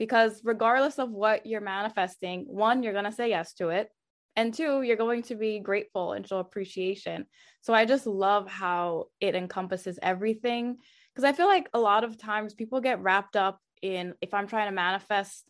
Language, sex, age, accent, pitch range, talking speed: English, female, 20-39, American, 190-235 Hz, 195 wpm